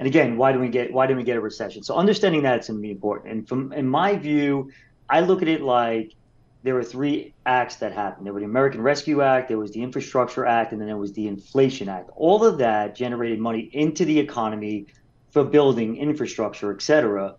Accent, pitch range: American, 115-150 Hz